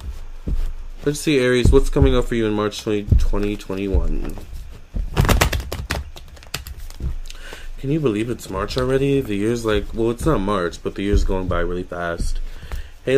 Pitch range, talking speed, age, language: 95-115 Hz, 145 wpm, 20-39, English